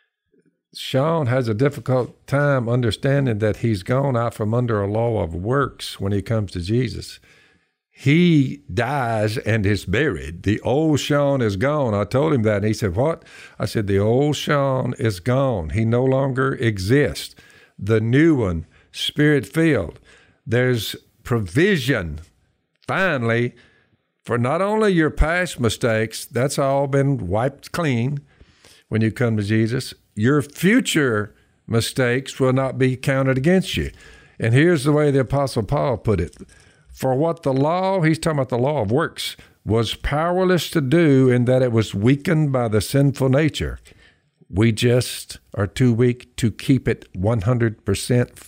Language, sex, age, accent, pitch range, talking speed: English, male, 60-79, American, 110-140 Hz, 155 wpm